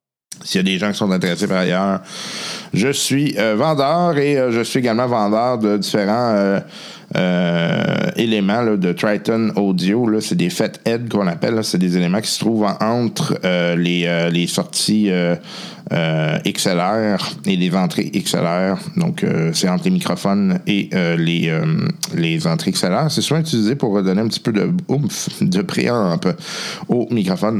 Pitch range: 100-165 Hz